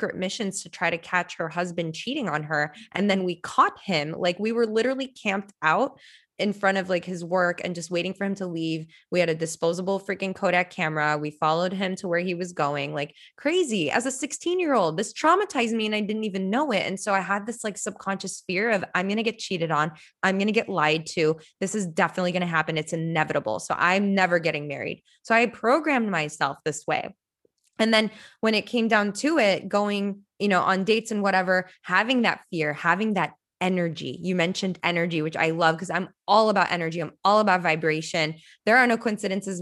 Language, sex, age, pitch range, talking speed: English, female, 20-39, 170-215 Hz, 220 wpm